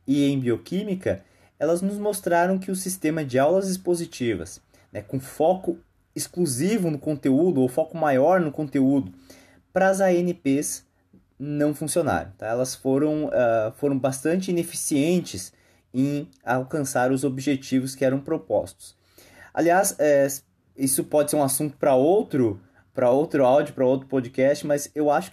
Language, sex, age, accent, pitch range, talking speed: Portuguese, male, 20-39, Brazilian, 130-170 Hz, 130 wpm